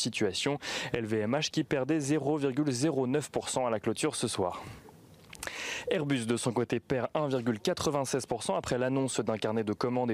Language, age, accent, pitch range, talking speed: French, 20-39, French, 110-140 Hz, 130 wpm